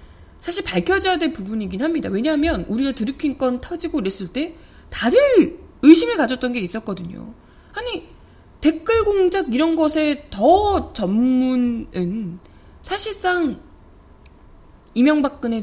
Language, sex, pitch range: Korean, female, 205-320 Hz